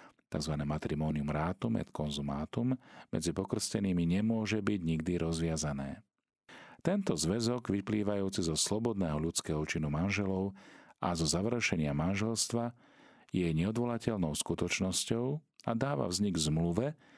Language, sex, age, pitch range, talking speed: Slovak, male, 40-59, 80-110 Hz, 105 wpm